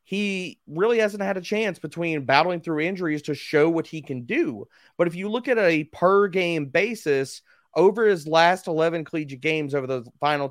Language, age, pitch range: English, 30-49, 130-170 Hz